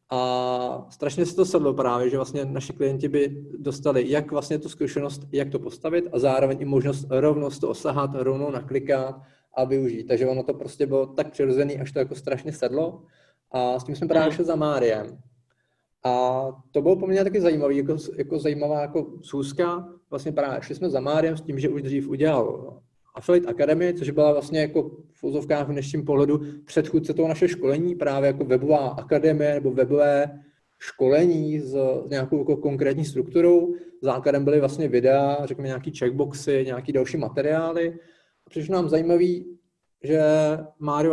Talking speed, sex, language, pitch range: 165 wpm, male, Czech, 135-155 Hz